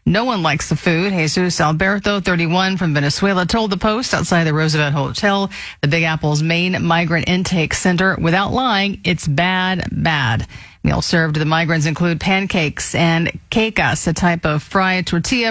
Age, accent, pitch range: 40-59, American, 160-210 Hz